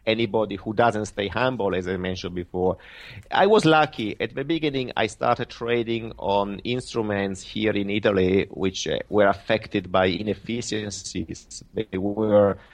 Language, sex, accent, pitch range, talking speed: English, male, Italian, 95-120 Hz, 140 wpm